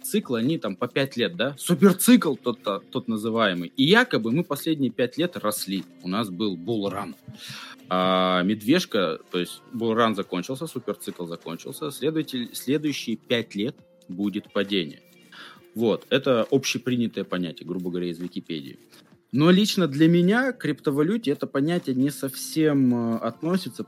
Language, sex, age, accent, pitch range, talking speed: Russian, male, 20-39, native, 95-145 Hz, 135 wpm